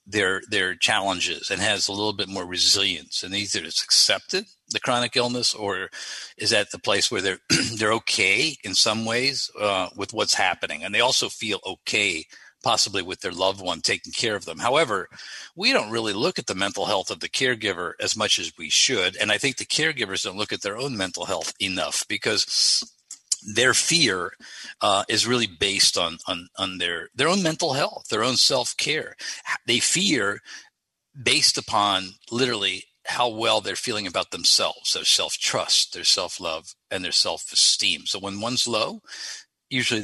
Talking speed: 175 wpm